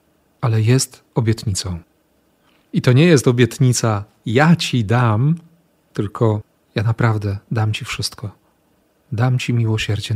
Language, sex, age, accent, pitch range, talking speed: Polish, male, 40-59, native, 115-145 Hz, 120 wpm